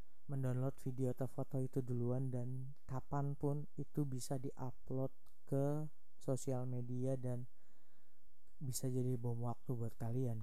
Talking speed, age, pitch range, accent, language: 130 wpm, 20-39, 120-135 Hz, native, Indonesian